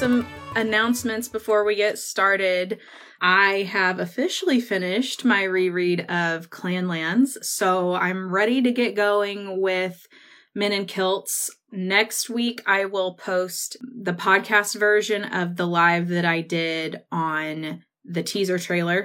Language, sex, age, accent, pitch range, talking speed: English, female, 20-39, American, 175-210 Hz, 130 wpm